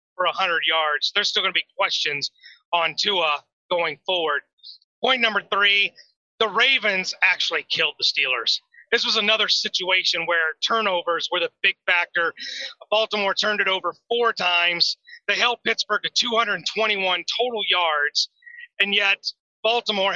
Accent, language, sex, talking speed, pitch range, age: American, English, male, 145 wpm, 185-240 Hz, 30-49